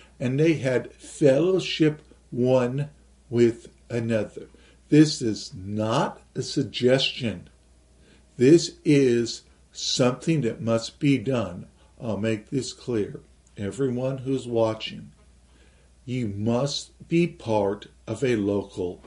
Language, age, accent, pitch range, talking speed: English, 50-69, American, 105-140 Hz, 105 wpm